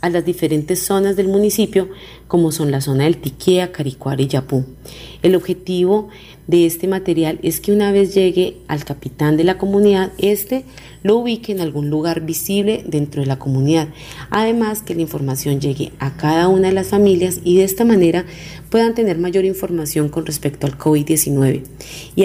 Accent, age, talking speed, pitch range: Colombian, 30-49, 175 wpm, 145-190 Hz